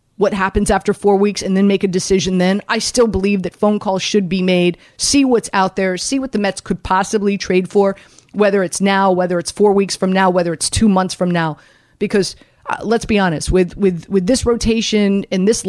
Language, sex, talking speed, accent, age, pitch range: English, female, 225 wpm, American, 30-49, 185-210 Hz